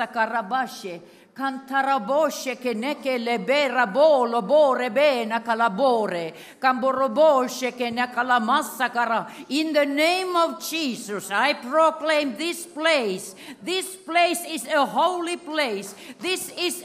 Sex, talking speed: female, 60 wpm